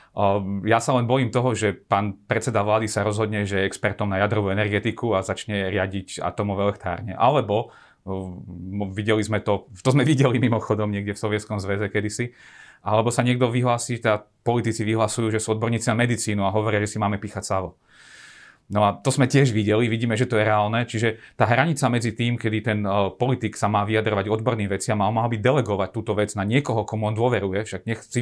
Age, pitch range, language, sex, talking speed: 40-59, 100-120 Hz, Slovak, male, 200 wpm